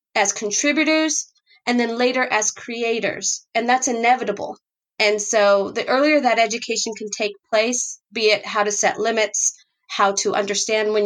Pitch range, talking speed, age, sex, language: 195-220 Hz, 155 wpm, 30-49, female, English